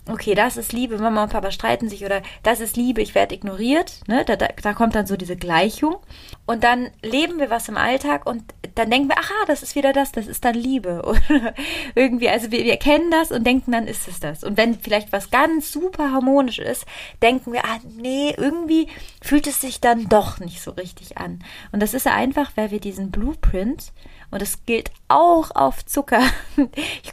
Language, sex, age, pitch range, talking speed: German, female, 20-39, 200-255 Hz, 210 wpm